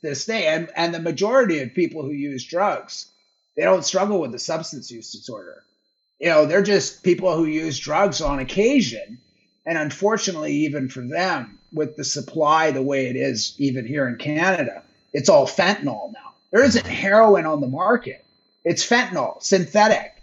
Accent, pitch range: American, 145-200 Hz